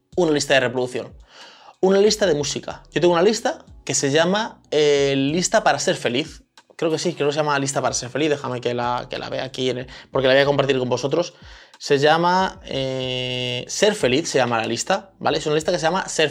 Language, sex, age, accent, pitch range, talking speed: Spanish, male, 20-39, Spanish, 125-175 Hz, 230 wpm